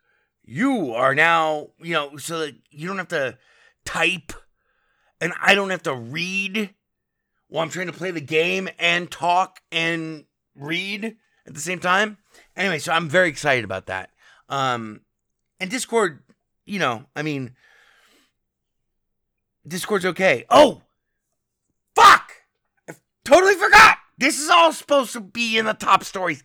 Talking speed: 145 wpm